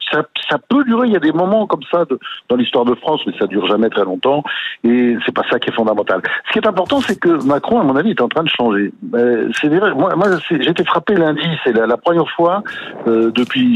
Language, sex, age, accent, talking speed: French, male, 60-79, French, 270 wpm